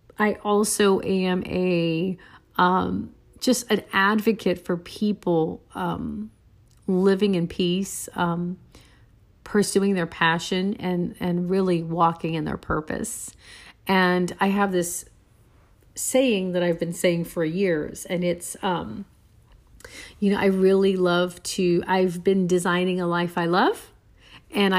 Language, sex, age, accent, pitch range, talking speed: English, female, 40-59, American, 175-210 Hz, 130 wpm